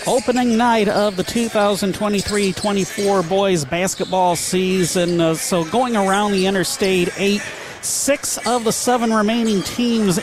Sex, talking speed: male, 125 wpm